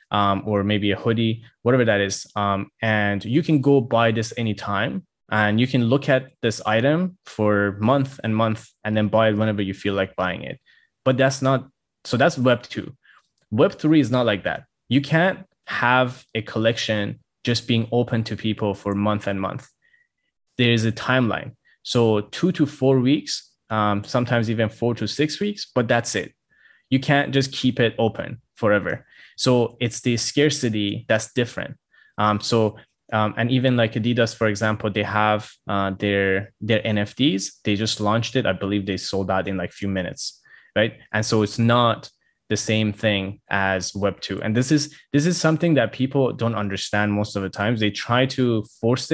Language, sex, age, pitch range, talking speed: English, male, 20-39, 105-125 Hz, 185 wpm